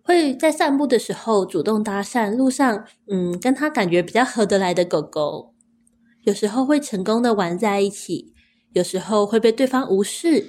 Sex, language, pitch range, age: female, Chinese, 195-260 Hz, 20-39